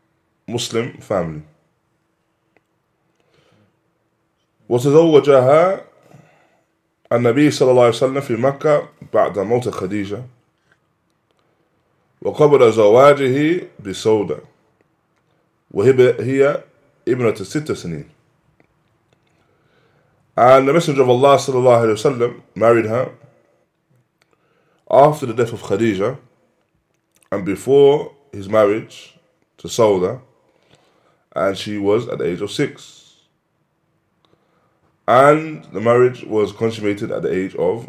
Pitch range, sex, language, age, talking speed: 110-145 Hz, male, English, 20-39, 100 wpm